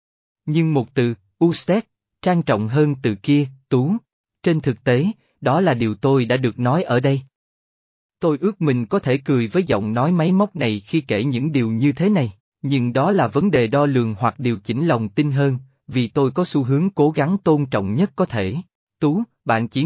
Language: Vietnamese